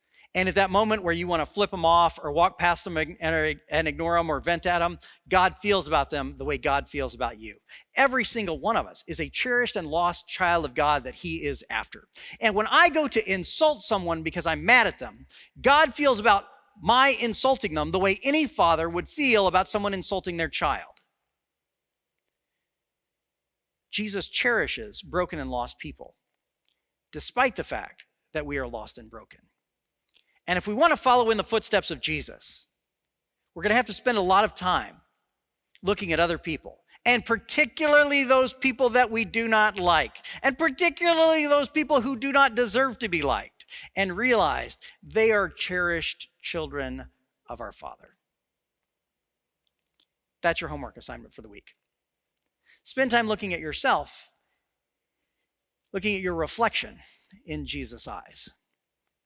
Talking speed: 165 wpm